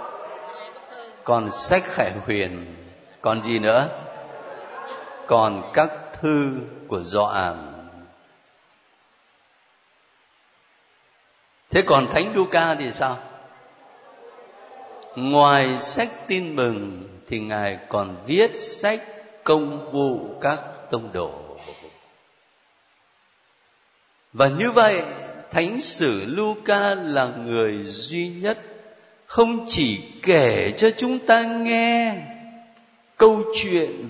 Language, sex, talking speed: Vietnamese, male, 90 wpm